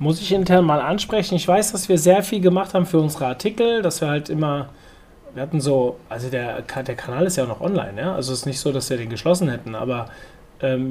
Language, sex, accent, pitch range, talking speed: German, male, German, 140-180 Hz, 250 wpm